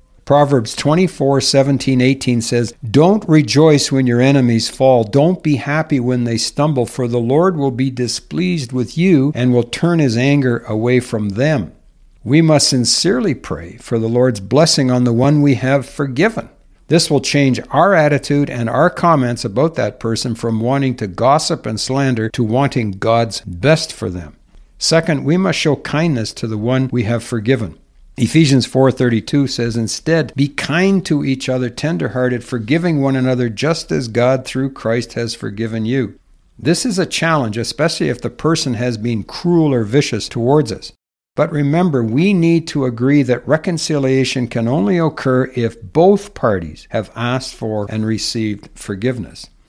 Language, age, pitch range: English, 60-79, 120-150 Hz